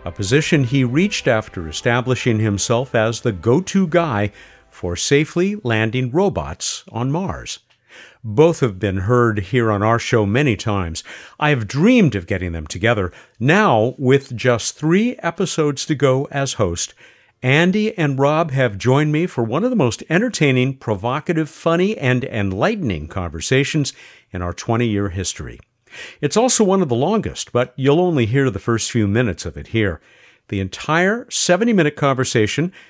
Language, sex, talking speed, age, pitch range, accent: English, male, 155 wpm, 50-69, 105-155 Hz, American